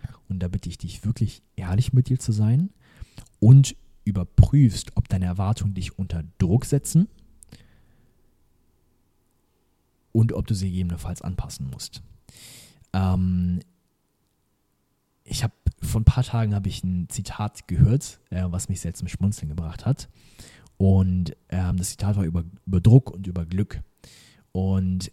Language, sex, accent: German, male, German